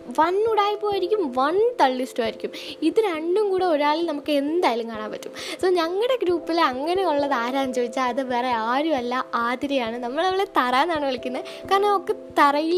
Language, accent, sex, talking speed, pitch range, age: Malayalam, native, female, 135 wpm, 260-385 Hz, 20-39